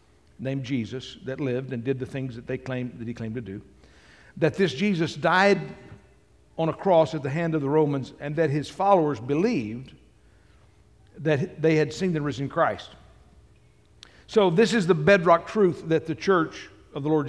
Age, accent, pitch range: 60-79, American, 135-175 Hz